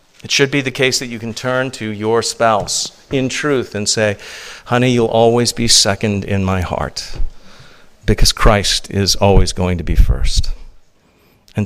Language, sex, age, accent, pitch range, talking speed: English, male, 50-69, American, 95-120 Hz, 170 wpm